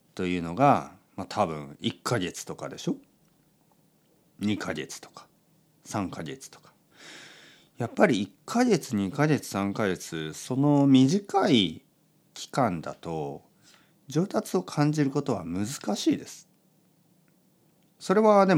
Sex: male